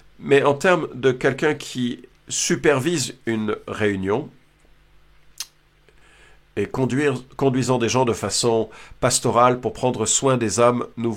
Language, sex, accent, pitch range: French, male, French, 110-150 Hz